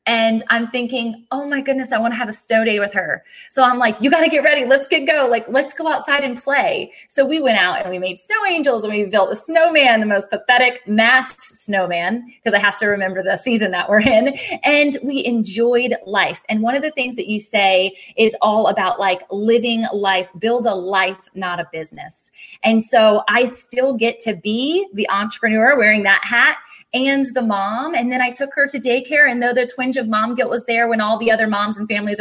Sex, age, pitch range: female, 20-39, 205-255 Hz